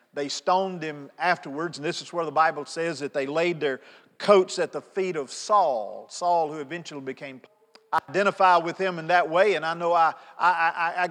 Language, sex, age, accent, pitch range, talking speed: English, male, 50-69, American, 165-210 Hz, 210 wpm